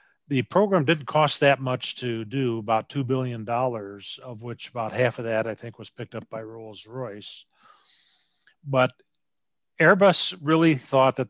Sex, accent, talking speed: male, American, 155 wpm